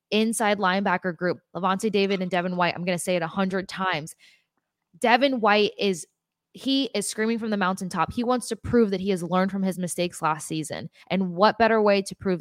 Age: 20-39